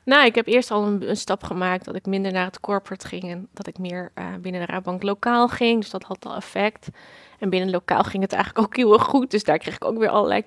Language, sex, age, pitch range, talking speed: Dutch, female, 20-39, 190-215 Hz, 275 wpm